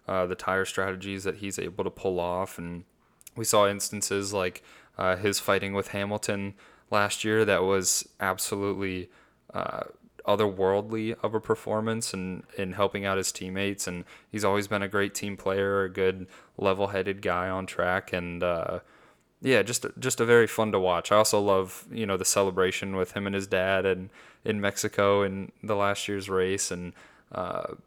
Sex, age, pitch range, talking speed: male, 20-39, 95-105 Hz, 175 wpm